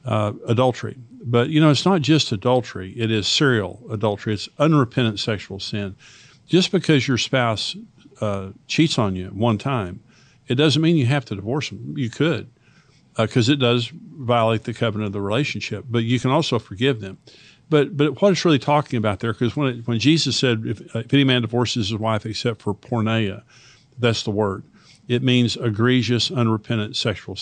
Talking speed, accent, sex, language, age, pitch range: 185 wpm, American, male, English, 50-69, 110-130 Hz